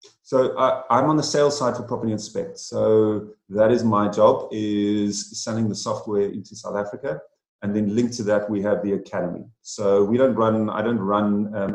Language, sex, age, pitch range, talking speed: English, male, 30-49, 100-115 Hz, 200 wpm